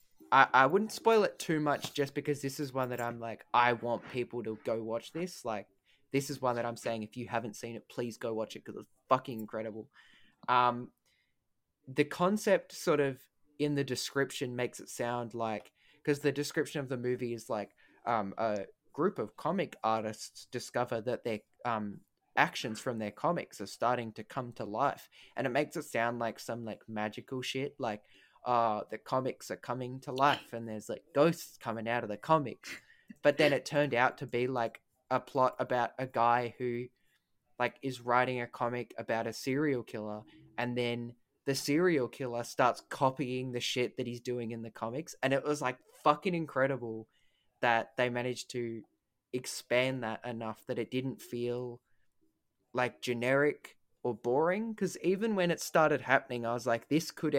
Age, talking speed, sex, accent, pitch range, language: 20-39, 185 wpm, male, Australian, 115-135 Hz, English